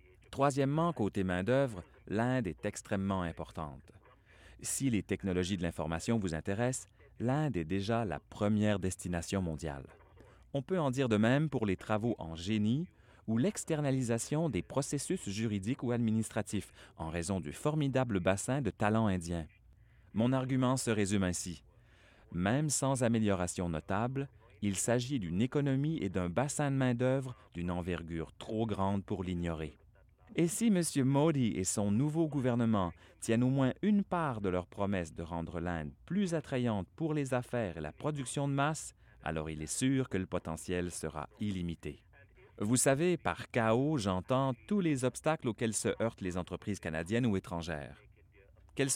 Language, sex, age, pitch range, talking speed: French, male, 30-49, 90-130 Hz, 155 wpm